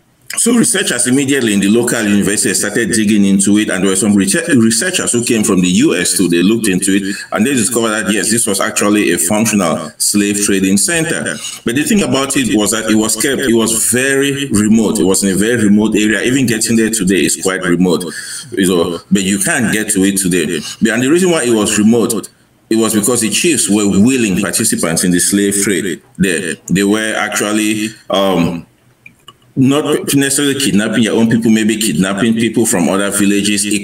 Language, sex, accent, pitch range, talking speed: English, male, Nigerian, 100-115 Hz, 195 wpm